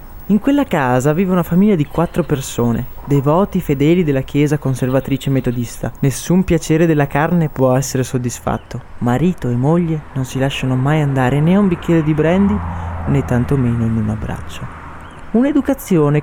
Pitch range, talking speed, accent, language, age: 120-165 Hz, 155 wpm, native, Italian, 20-39